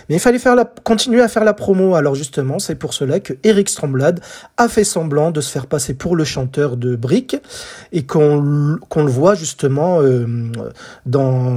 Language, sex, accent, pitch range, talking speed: French, male, French, 135-185 Hz, 190 wpm